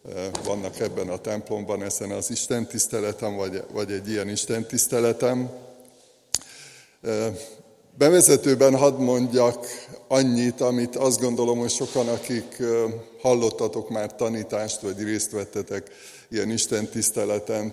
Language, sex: Hungarian, male